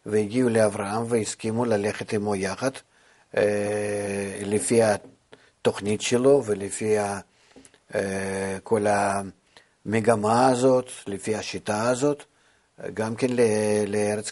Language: Hebrew